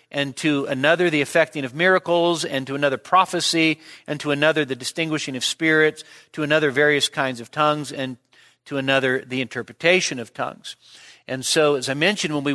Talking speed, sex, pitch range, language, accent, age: 180 wpm, male, 140-170 Hz, English, American, 50-69